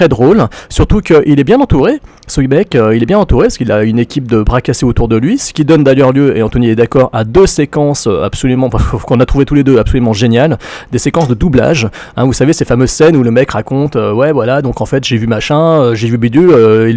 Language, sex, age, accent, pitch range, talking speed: French, male, 40-59, French, 120-155 Hz, 255 wpm